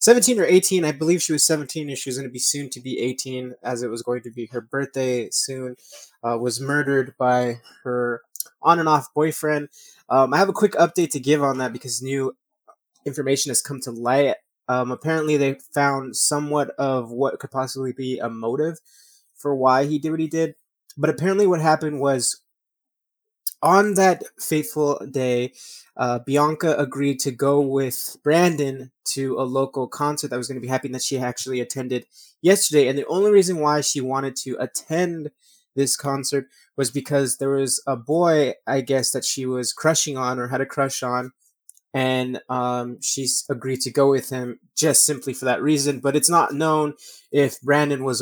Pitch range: 130-150 Hz